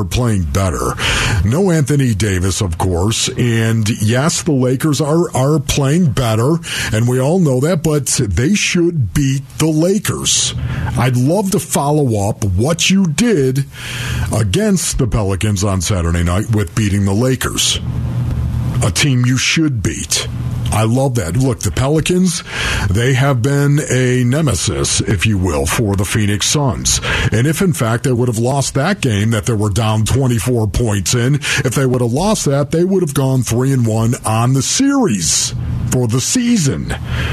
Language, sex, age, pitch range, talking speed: English, male, 50-69, 110-145 Hz, 165 wpm